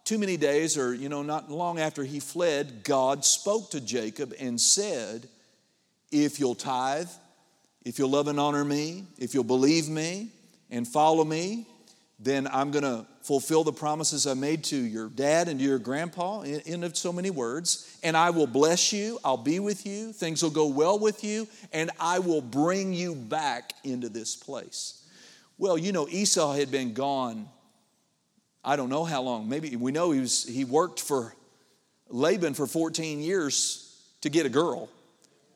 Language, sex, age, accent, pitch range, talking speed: English, male, 50-69, American, 135-170 Hz, 175 wpm